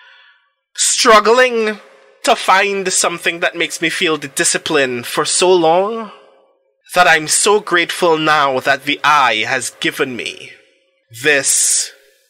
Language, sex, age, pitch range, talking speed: English, male, 20-39, 160-210 Hz, 120 wpm